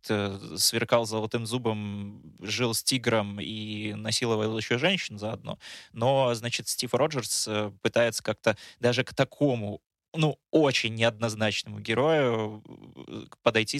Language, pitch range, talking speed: Russian, 110-125 Hz, 110 wpm